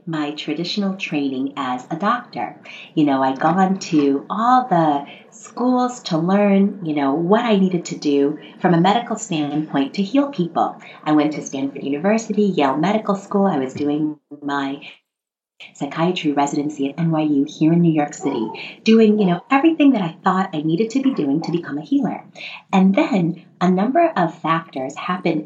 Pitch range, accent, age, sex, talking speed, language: 150-200 Hz, American, 30-49, female, 175 wpm, English